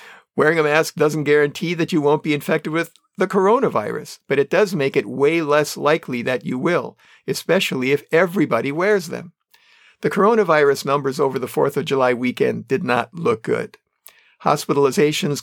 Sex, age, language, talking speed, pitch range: male, 50-69, English, 165 wpm, 135-165 Hz